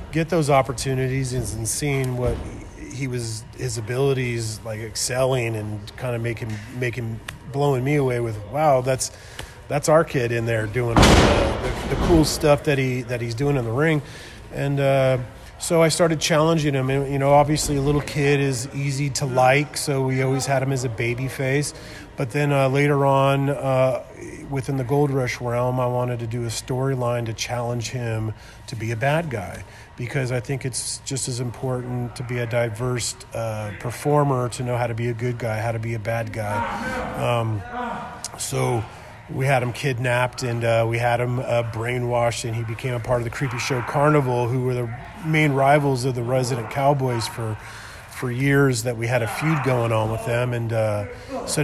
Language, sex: English, male